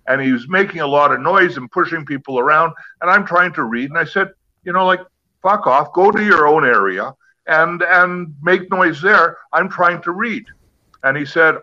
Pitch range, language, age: 135-175 Hz, English, 50-69